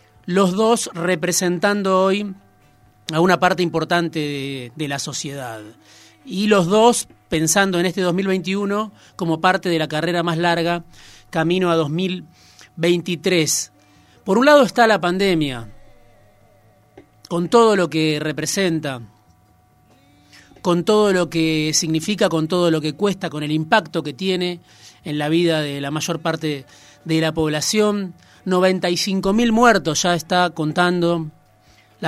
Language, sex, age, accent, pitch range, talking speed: Spanish, male, 30-49, Argentinian, 150-185 Hz, 130 wpm